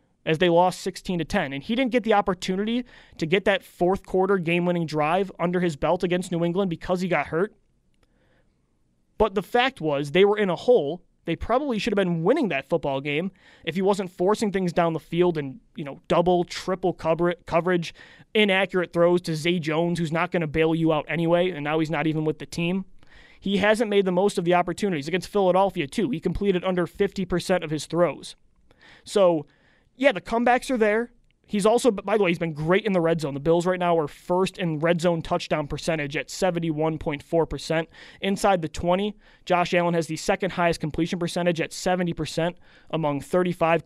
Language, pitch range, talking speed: English, 165-200 Hz, 200 wpm